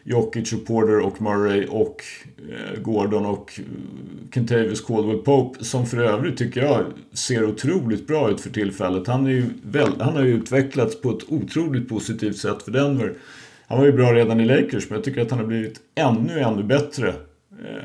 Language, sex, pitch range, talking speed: Swedish, male, 105-130 Hz, 175 wpm